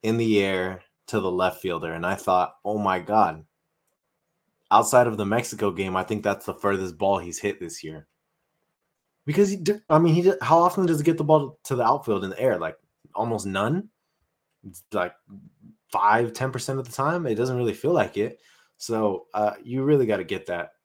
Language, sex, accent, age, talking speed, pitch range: English, male, American, 20-39, 205 wpm, 100-145 Hz